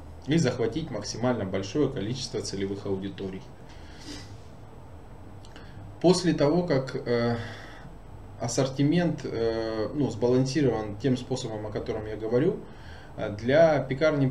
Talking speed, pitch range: 90 wpm, 105-140 Hz